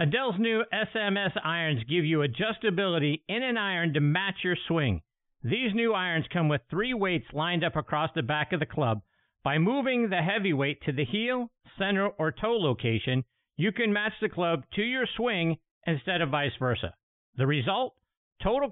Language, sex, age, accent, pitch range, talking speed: English, male, 50-69, American, 135-195 Hz, 175 wpm